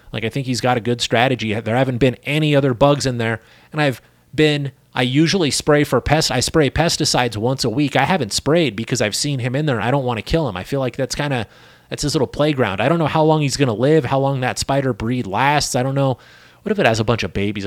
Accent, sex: American, male